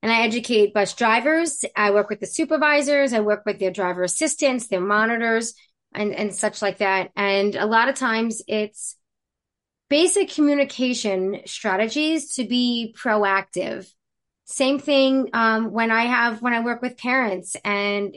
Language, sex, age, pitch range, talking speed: English, female, 30-49, 210-280 Hz, 155 wpm